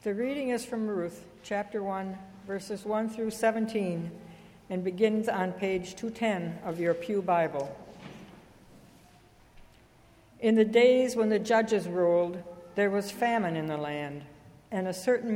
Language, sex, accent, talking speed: English, female, American, 140 wpm